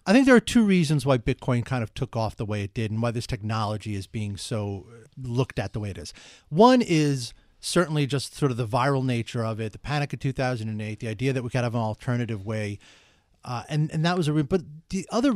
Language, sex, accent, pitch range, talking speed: English, male, American, 110-155 Hz, 245 wpm